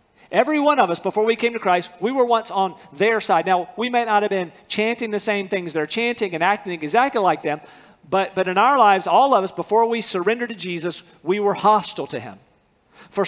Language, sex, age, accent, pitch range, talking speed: English, male, 50-69, American, 190-235 Hz, 230 wpm